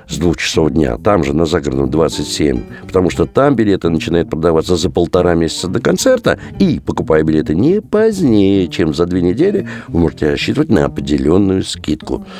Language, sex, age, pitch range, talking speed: Russian, male, 60-79, 80-110 Hz, 170 wpm